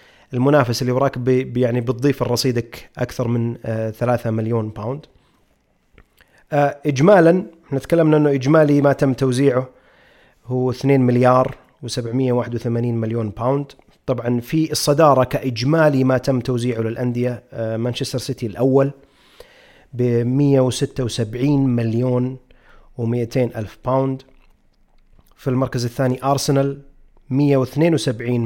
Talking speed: 100 wpm